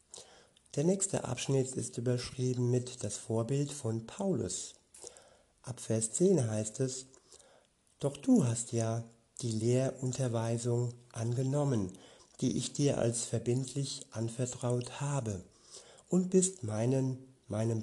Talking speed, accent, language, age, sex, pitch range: 110 wpm, German, German, 60-79, male, 120-140 Hz